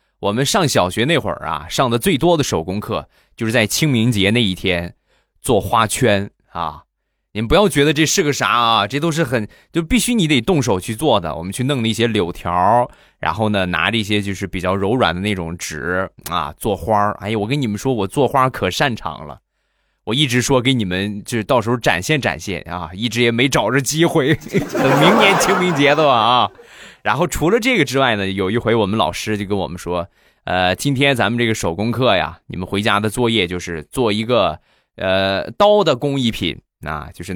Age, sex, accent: 20-39, male, native